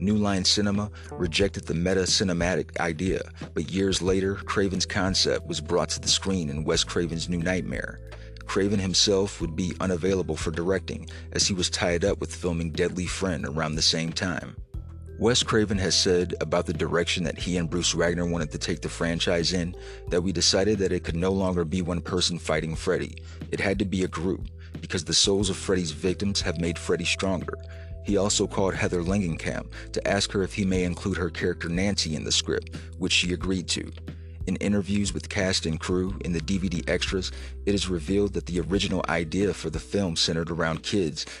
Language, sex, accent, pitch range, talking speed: English, male, American, 80-95 Hz, 195 wpm